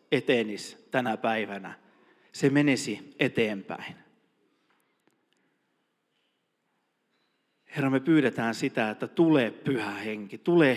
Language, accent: Finnish, native